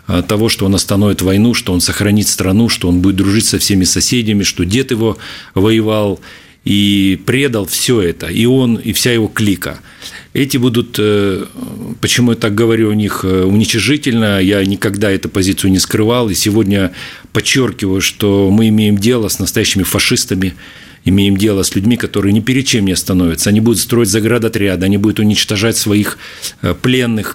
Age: 40-59